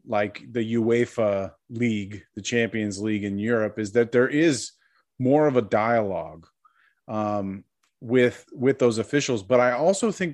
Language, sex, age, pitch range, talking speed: English, male, 30-49, 110-135 Hz, 150 wpm